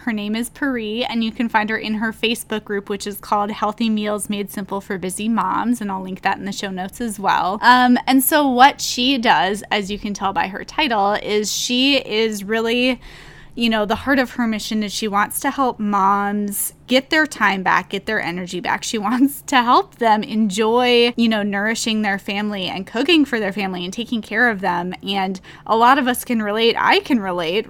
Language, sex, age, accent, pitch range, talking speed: English, female, 10-29, American, 200-240 Hz, 220 wpm